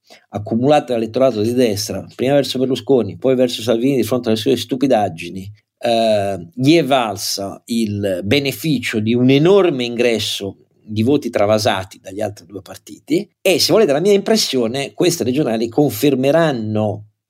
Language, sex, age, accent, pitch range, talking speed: Italian, male, 50-69, native, 105-145 Hz, 140 wpm